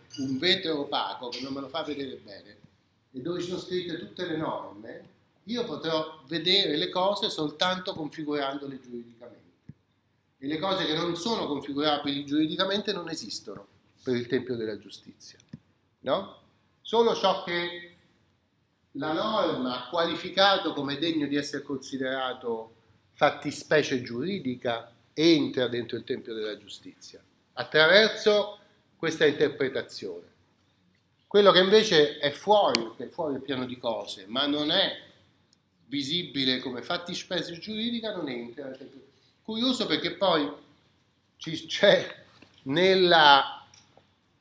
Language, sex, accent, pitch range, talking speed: Italian, male, native, 130-180 Hz, 125 wpm